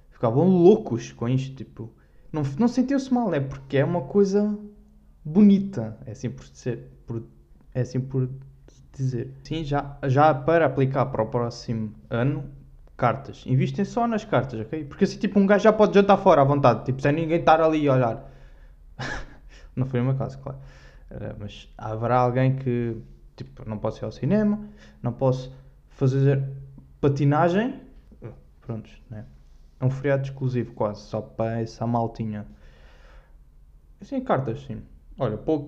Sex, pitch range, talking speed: male, 110-160 Hz, 155 wpm